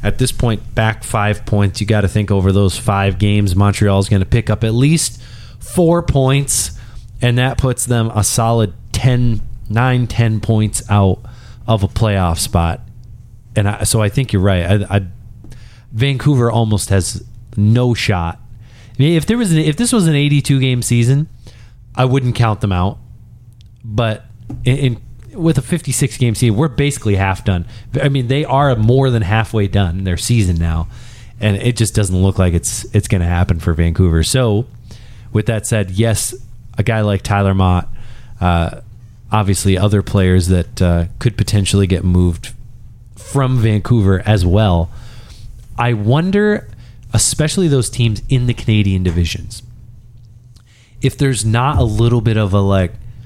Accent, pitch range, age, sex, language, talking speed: American, 100-120 Hz, 30-49, male, English, 165 wpm